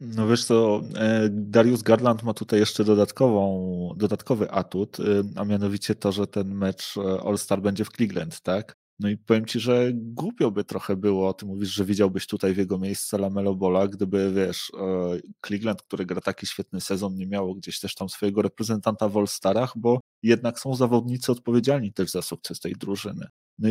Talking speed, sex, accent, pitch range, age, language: 175 wpm, male, native, 100-115 Hz, 30-49, Polish